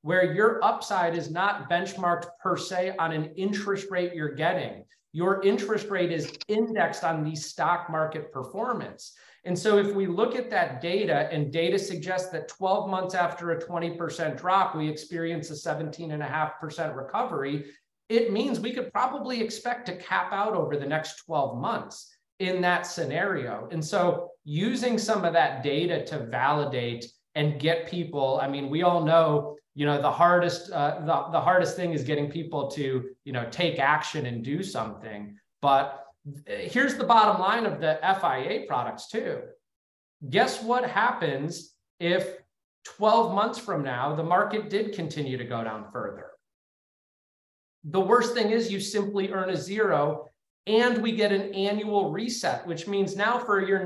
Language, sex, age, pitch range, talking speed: English, male, 30-49, 150-200 Hz, 170 wpm